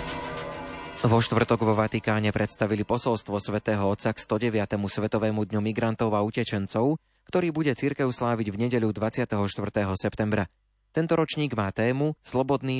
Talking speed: 130 wpm